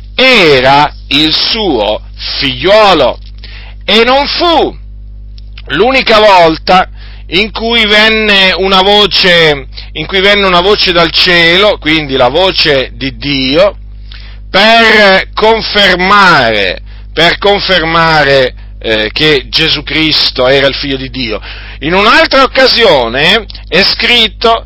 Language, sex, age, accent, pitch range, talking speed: Italian, male, 40-59, native, 135-205 Hz, 100 wpm